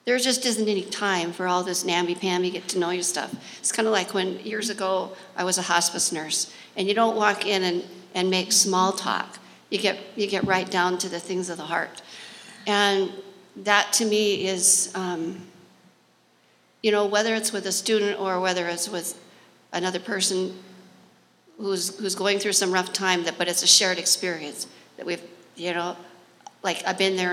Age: 50-69